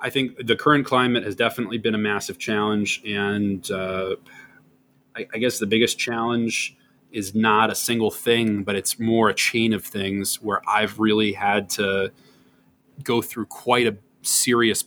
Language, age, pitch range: English, 20-39, 100-120 Hz